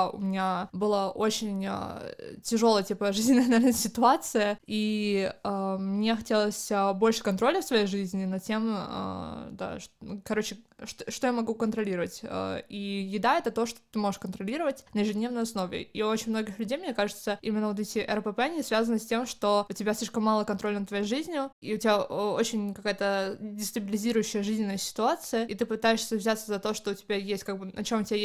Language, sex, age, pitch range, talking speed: Russian, female, 20-39, 200-230 Hz, 180 wpm